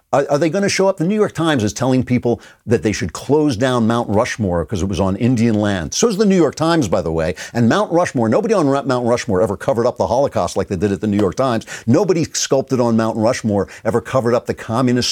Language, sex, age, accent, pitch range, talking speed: English, male, 50-69, American, 110-165 Hz, 260 wpm